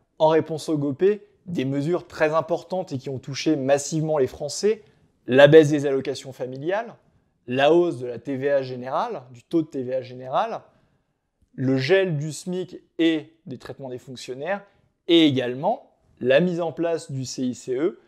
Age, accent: 20-39, French